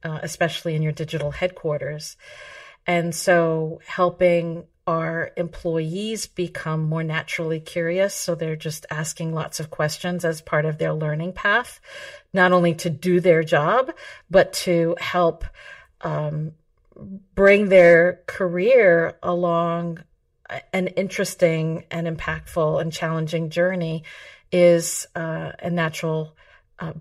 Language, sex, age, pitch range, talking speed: English, female, 50-69, 160-180 Hz, 120 wpm